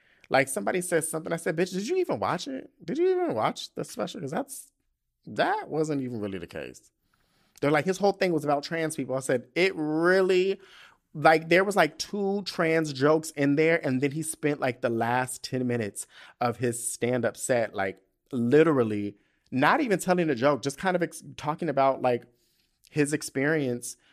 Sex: male